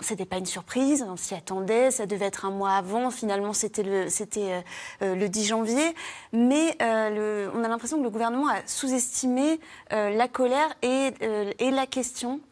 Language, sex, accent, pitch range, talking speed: French, female, French, 205-260 Hz, 175 wpm